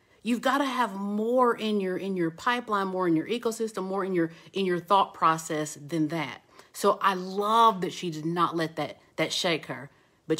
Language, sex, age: English, female, 40-59